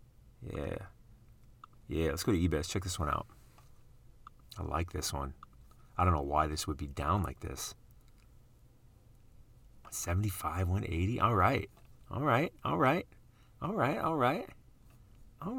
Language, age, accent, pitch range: English, 30-49, American, 85-115 Hz